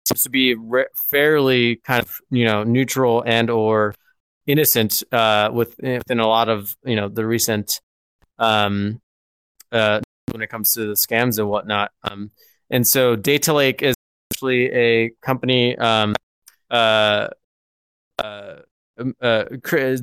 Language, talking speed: English, 135 wpm